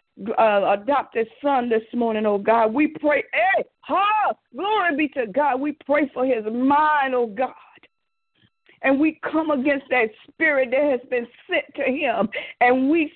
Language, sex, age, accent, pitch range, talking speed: English, female, 50-69, American, 235-295 Hz, 155 wpm